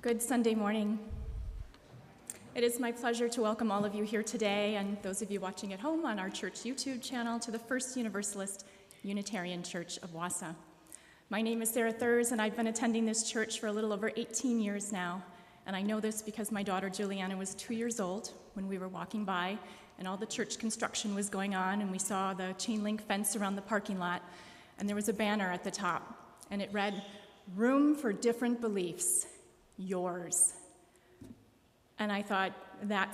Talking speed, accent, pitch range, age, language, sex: 195 wpm, American, 190-230 Hz, 30-49, English, female